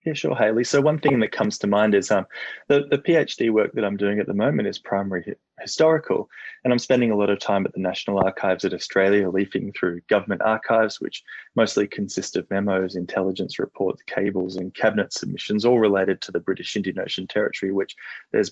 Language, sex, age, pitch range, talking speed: English, male, 20-39, 95-135 Hz, 205 wpm